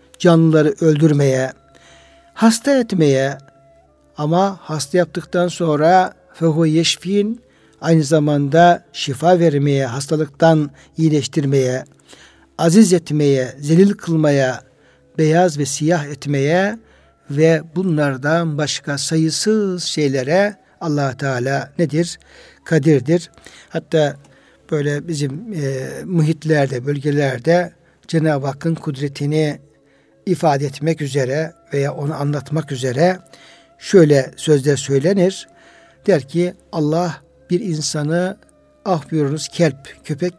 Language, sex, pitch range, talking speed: Turkish, male, 140-175 Hz, 90 wpm